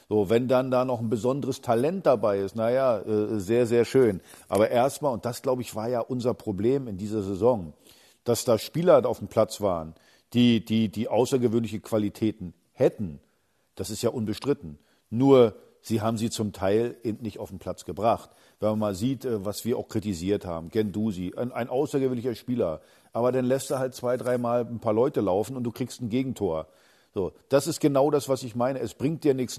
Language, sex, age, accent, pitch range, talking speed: German, male, 50-69, German, 105-130 Hz, 200 wpm